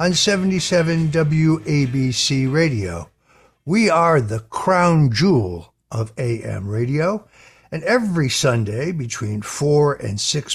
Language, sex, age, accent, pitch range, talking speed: English, male, 60-79, American, 125-165 Hz, 110 wpm